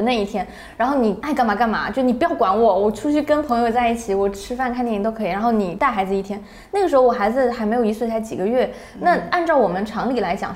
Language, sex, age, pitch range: Chinese, female, 20-39, 205-265 Hz